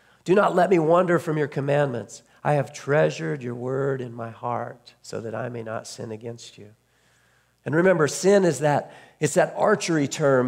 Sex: male